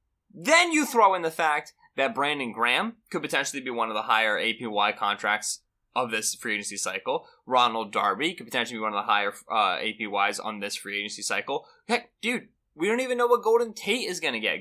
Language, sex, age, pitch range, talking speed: English, male, 20-39, 110-180 Hz, 215 wpm